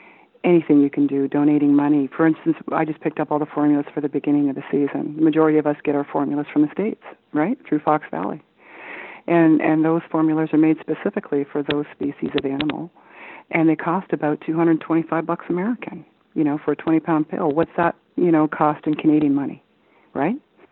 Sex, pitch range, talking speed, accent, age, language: female, 145-165 Hz, 200 wpm, American, 40-59, English